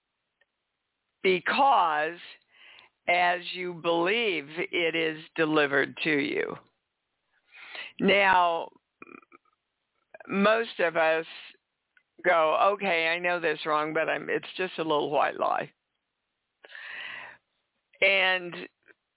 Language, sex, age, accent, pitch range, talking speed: English, female, 60-79, American, 170-230 Hz, 85 wpm